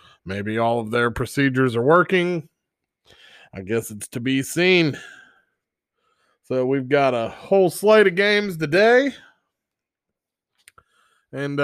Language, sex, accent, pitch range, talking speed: English, male, American, 125-160 Hz, 120 wpm